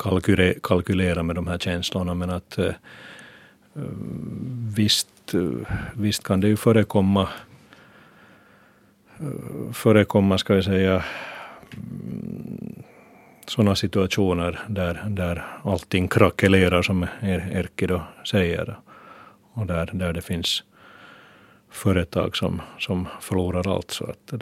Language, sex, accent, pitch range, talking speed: Finnish, male, native, 85-100 Hz, 95 wpm